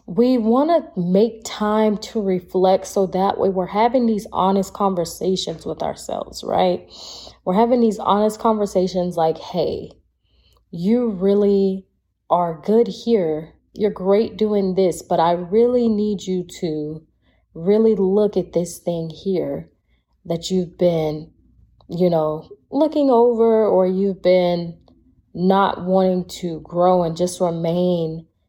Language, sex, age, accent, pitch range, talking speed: English, female, 20-39, American, 170-205 Hz, 135 wpm